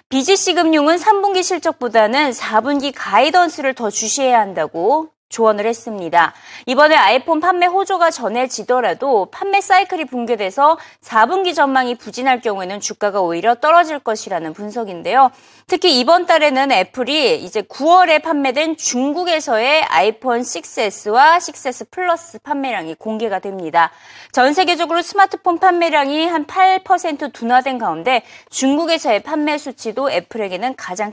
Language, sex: Korean, female